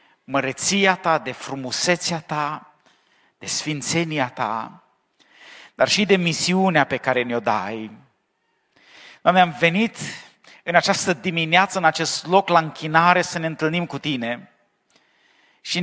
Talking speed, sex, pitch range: 125 wpm, male, 155-190 Hz